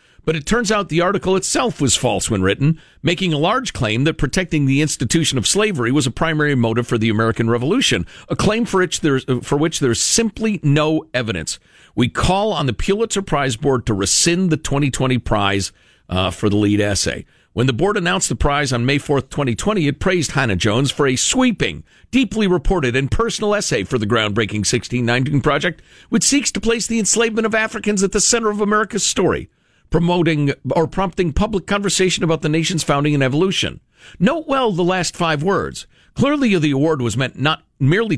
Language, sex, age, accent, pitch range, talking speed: English, male, 50-69, American, 120-185 Hz, 190 wpm